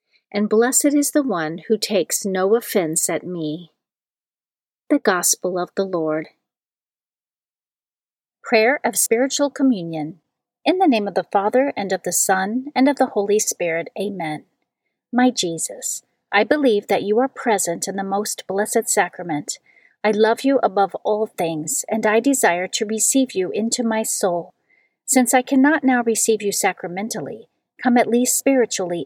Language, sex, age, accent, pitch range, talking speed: English, female, 40-59, American, 190-250 Hz, 155 wpm